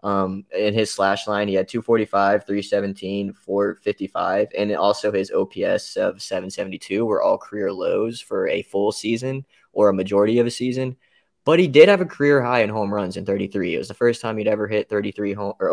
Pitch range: 100-120 Hz